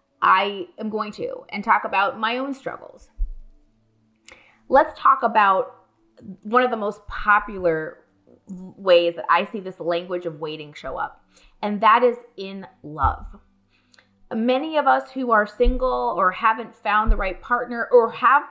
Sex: female